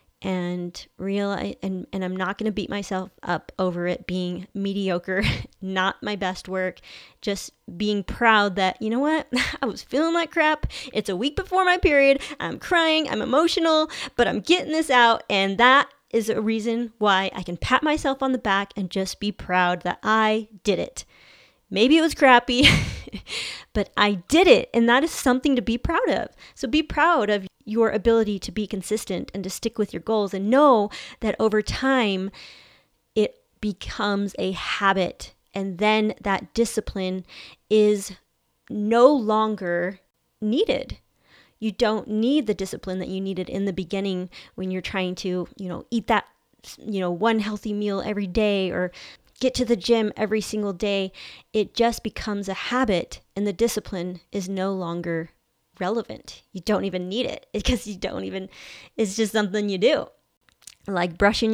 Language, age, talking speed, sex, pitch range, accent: English, 30-49, 175 wpm, female, 190-235 Hz, American